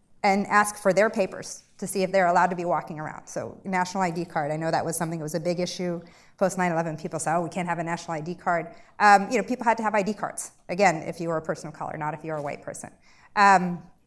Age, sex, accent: 30-49, female, American